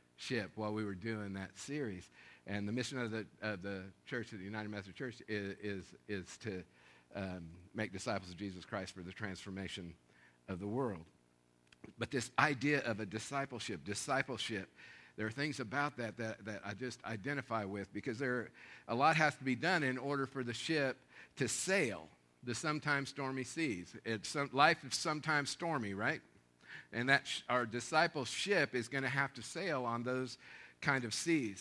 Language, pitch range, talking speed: English, 95-140 Hz, 185 wpm